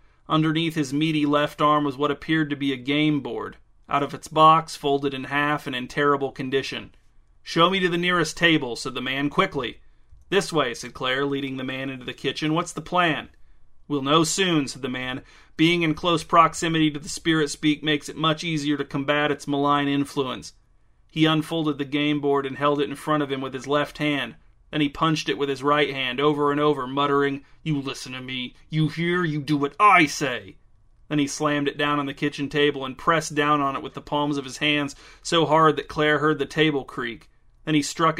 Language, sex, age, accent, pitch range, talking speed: English, male, 30-49, American, 140-155 Hz, 220 wpm